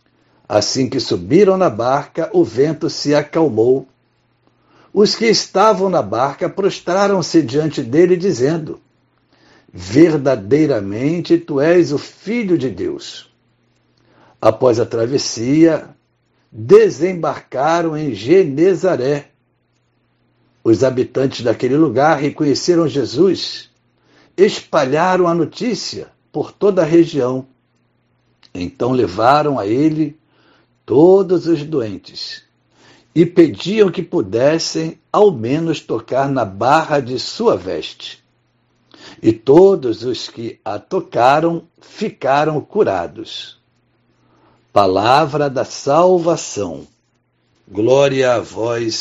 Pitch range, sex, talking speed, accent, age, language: 130-185 Hz, male, 95 wpm, Brazilian, 60-79, Portuguese